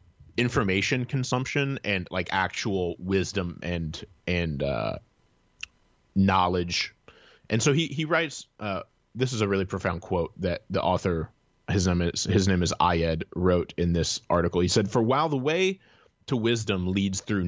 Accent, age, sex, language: American, 30-49, male, English